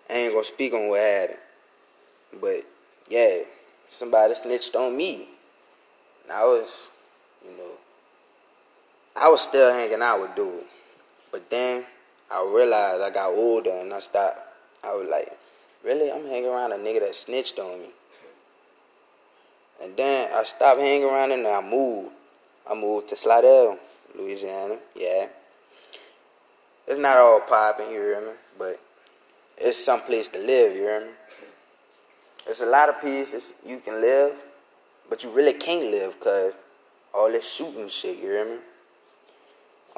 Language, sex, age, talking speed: English, male, 20-39, 160 wpm